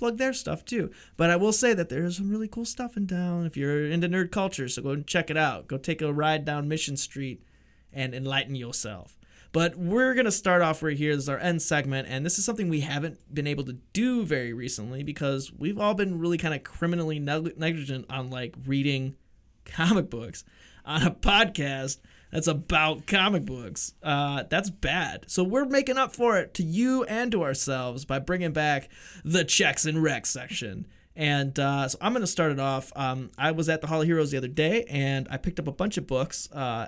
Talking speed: 215 wpm